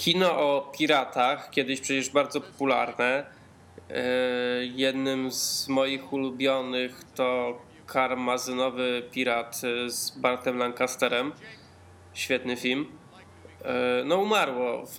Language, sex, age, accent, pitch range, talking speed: Polish, male, 20-39, native, 120-130 Hz, 90 wpm